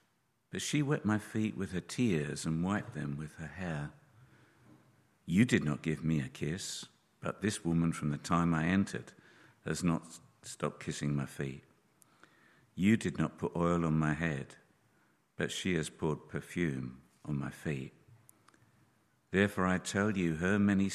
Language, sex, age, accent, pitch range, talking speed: English, male, 50-69, British, 75-100 Hz, 165 wpm